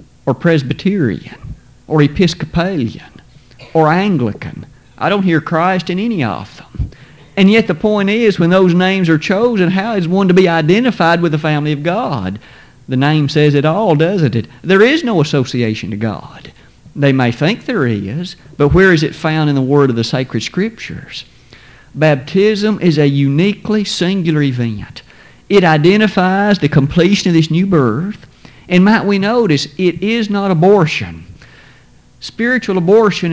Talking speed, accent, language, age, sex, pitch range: 160 wpm, American, English, 50-69, male, 140-190 Hz